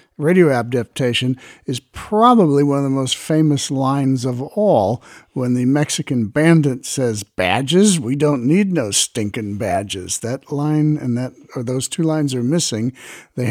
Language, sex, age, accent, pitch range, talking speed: English, male, 60-79, American, 110-150 Hz, 155 wpm